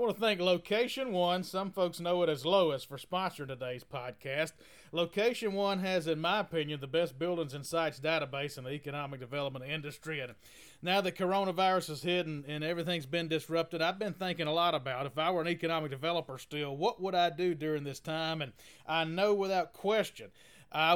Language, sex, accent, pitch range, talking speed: English, male, American, 145-180 Hz, 200 wpm